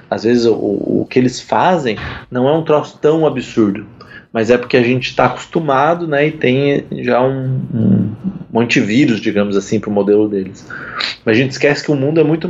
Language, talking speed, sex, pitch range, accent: Portuguese, 200 wpm, male, 115-140 Hz, Brazilian